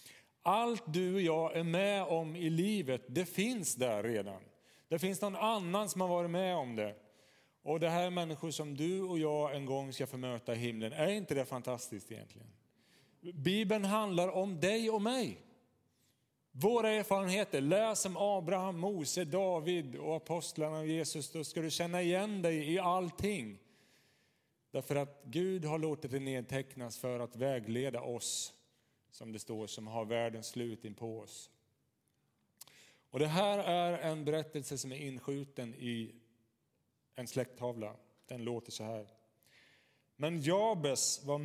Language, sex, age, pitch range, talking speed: Swedish, male, 30-49, 125-175 Hz, 155 wpm